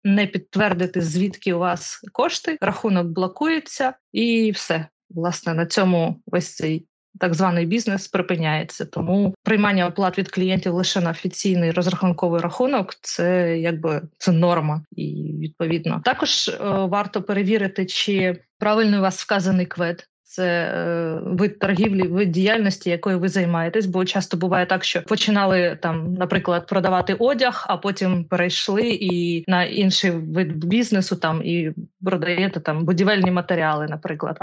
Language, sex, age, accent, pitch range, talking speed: Ukrainian, female, 20-39, native, 175-205 Hz, 135 wpm